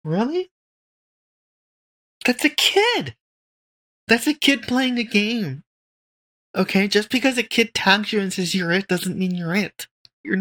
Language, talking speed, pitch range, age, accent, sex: English, 150 wpm, 170-205 Hz, 30-49, American, male